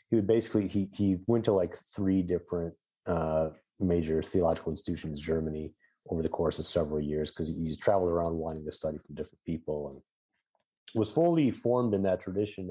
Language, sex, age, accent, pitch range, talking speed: English, male, 30-49, American, 80-100 Hz, 180 wpm